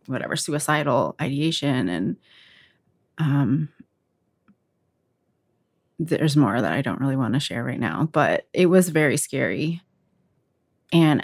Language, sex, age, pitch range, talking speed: English, female, 30-49, 145-210 Hz, 115 wpm